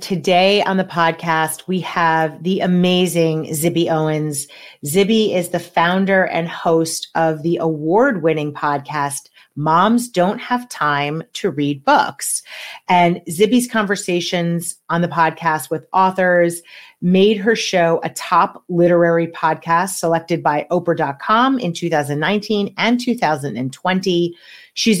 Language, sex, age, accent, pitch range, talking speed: English, female, 30-49, American, 160-195 Hz, 120 wpm